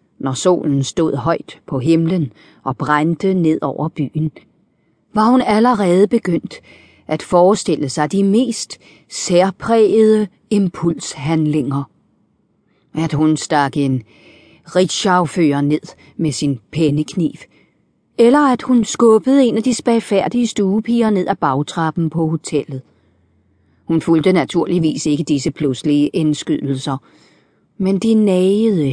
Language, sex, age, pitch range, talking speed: Danish, female, 40-59, 140-185 Hz, 110 wpm